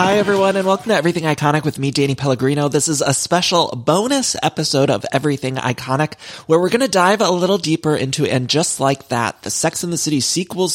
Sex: male